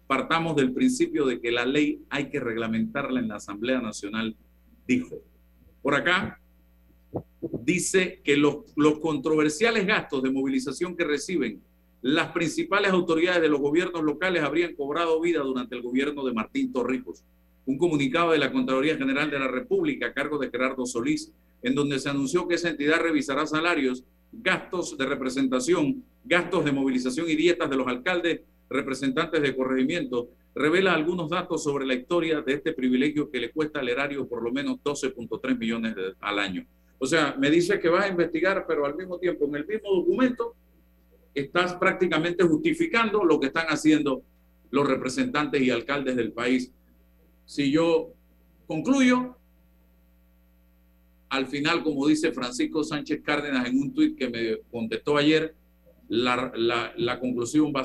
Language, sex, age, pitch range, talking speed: Spanish, male, 50-69, 120-165 Hz, 160 wpm